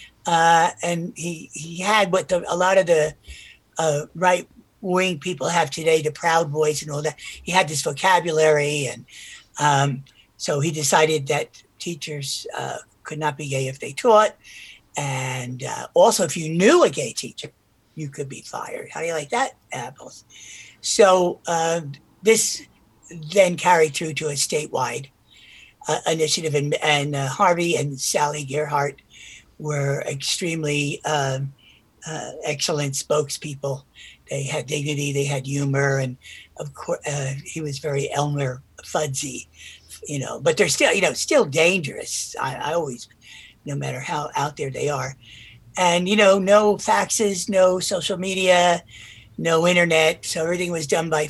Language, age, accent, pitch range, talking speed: English, 60-79, American, 140-170 Hz, 160 wpm